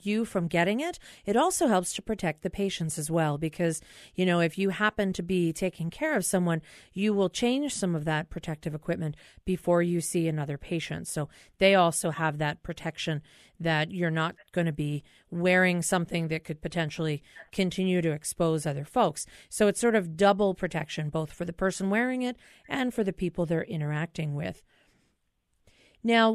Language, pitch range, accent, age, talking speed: English, 165-215 Hz, American, 40-59, 180 wpm